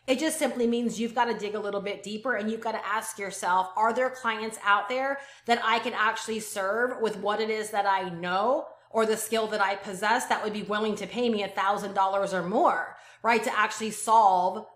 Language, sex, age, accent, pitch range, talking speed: English, female, 30-49, American, 200-245 Hz, 230 wpm